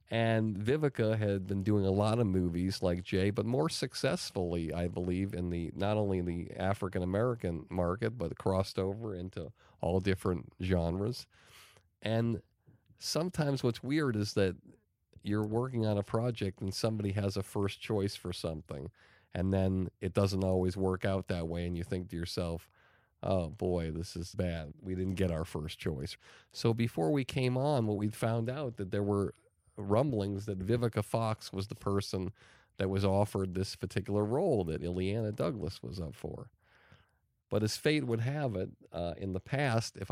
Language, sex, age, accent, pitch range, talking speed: English, male, 40-59, American, 95-115 Hz, 180 wpm